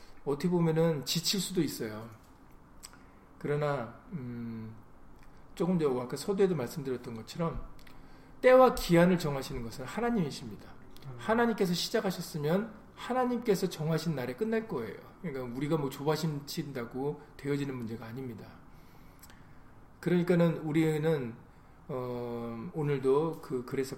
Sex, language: male, Korean